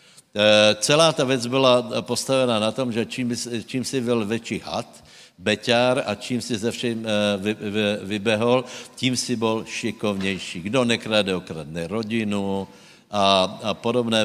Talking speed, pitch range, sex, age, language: 135 wpm, 100-120 Hz, male, 60-79, Slovak